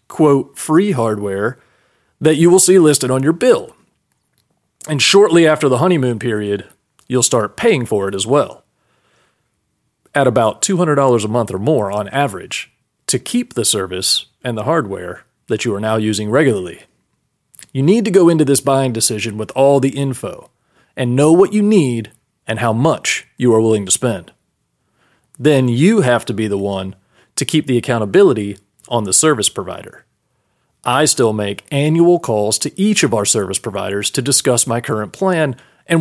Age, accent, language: 30-49, American, English